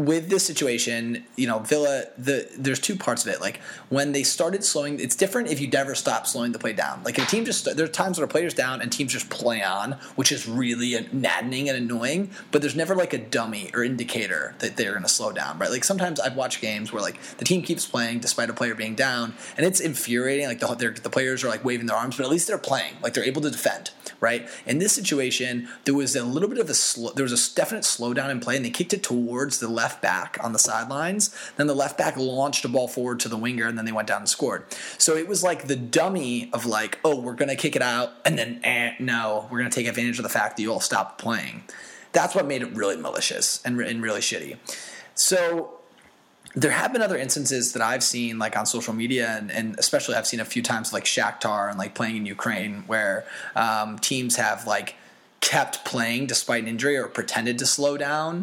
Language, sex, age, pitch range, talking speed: English, male, 20-39, 115-145 Hz, 240 wpm